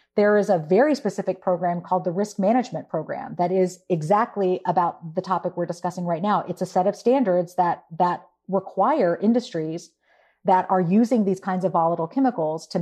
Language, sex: English, female